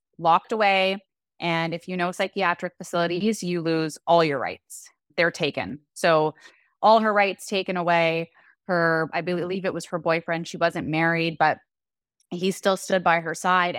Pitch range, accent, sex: 165-205 Hz, American, female